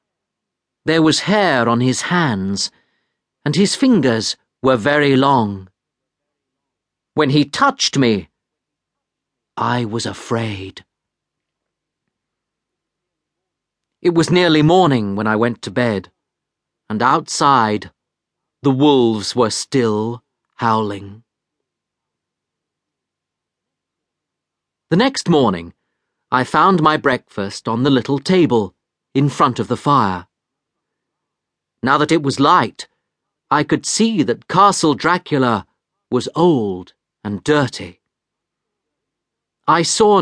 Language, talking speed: English, 100 wpm